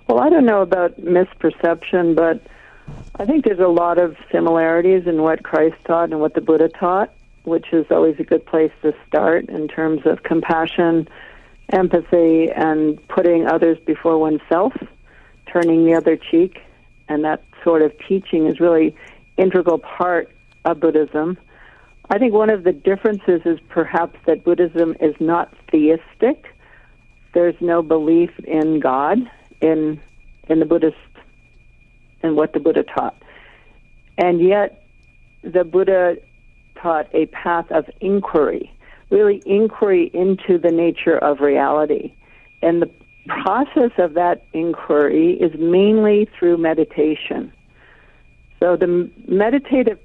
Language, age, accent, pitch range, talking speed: English, 50-69, American, 160-190 Hz, 135 wpm